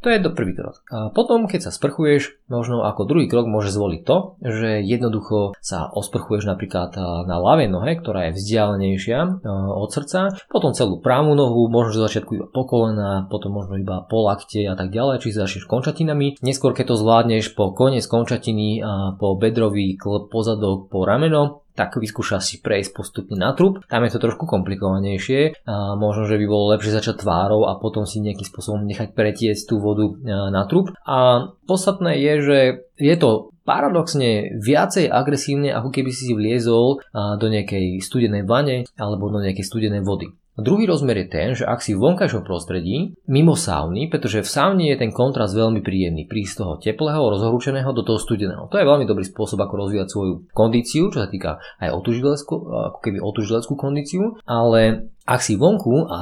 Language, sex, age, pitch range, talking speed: Slovak, male, 20-39, 100-140 Hz, 175 wpm